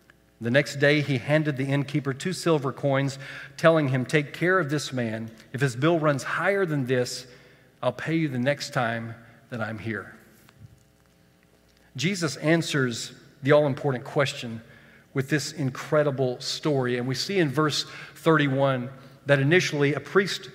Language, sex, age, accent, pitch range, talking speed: English, male, 40-59, American, 130-165 Hz, 150 wpm